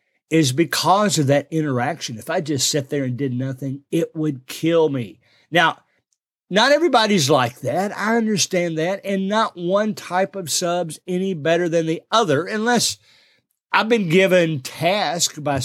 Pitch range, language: 135-180 Hz, English